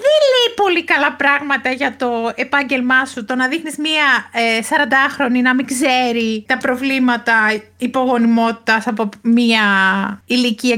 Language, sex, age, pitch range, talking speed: Greek, female, 30-49, 235-345 Hz, 135 wpm